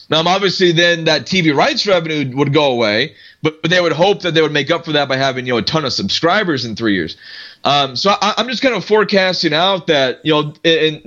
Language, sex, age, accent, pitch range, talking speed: English, male, 20-39, American, 140-185 Hz, 250 wpm